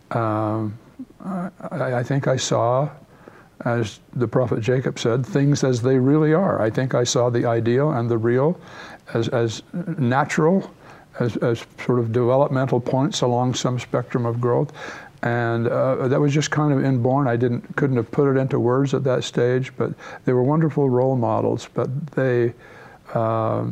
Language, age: English, 60-79